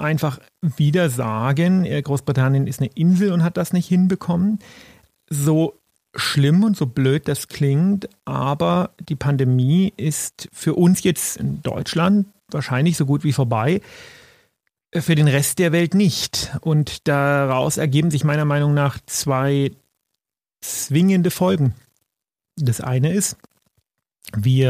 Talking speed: 130 wpm